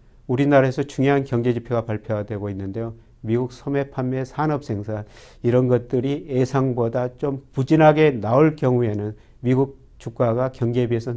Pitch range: 115-135 Hz